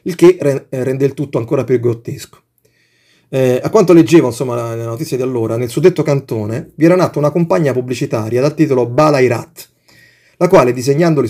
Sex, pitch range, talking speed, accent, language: male, 120-160 Hz, 175 wpm, native, Italian